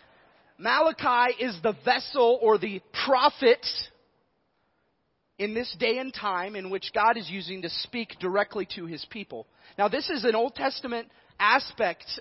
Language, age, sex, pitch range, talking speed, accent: English, 30-49, male, 205-270 Hz, 145 wpm, American